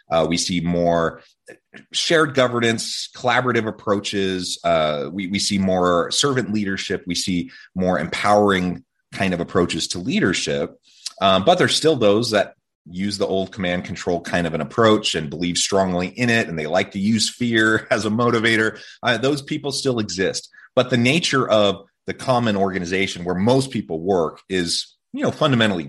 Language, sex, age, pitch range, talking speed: English, male, 30-49, 90-120 Hz, 165 wpm